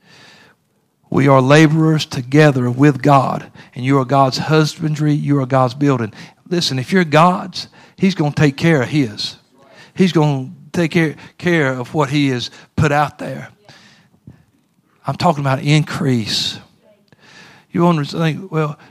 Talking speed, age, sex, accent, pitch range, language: 150 wpm, 50-69, male, American, 135-170 Hz, English